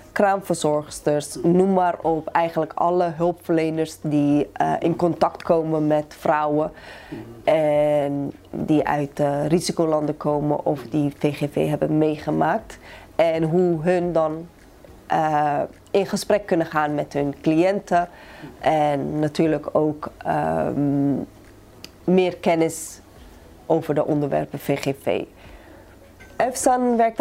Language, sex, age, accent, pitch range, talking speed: Dutch, female, 20-39, Dutch, 150-175 Hz, 105 wpm